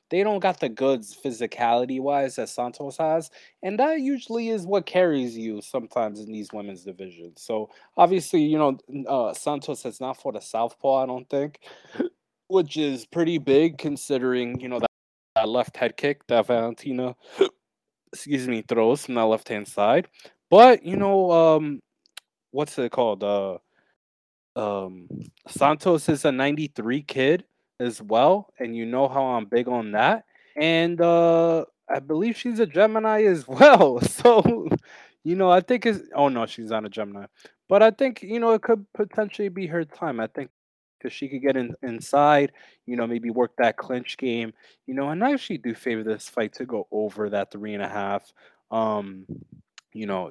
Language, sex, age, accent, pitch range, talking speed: English, male, 20-39, American, 110-170 Hz, 175 wpm